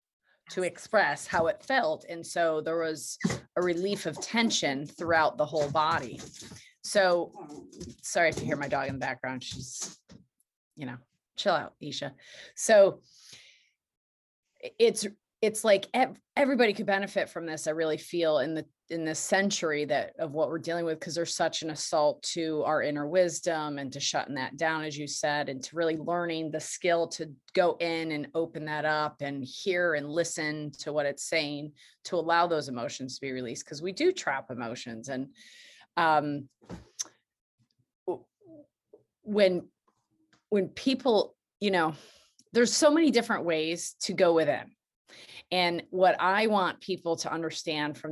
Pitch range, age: 150-195 Hz, 30-49